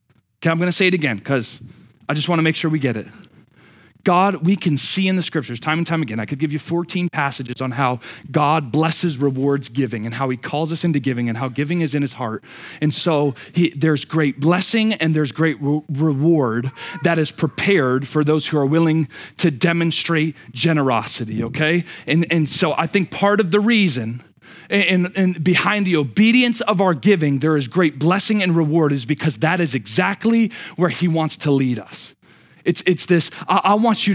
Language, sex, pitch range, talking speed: English, male, 145-185 Hz, 205 wpm